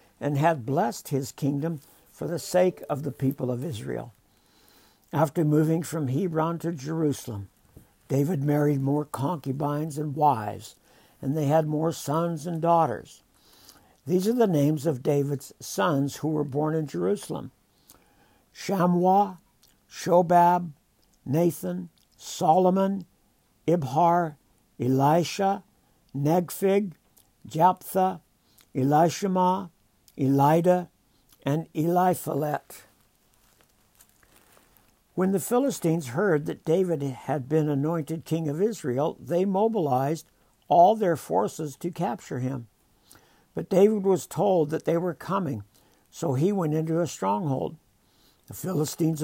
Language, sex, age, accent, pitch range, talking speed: English, male, 60-79, American, 140-180 Hz, 110 wpm